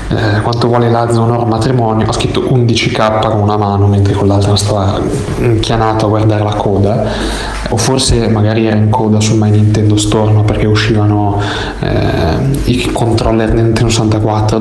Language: Italian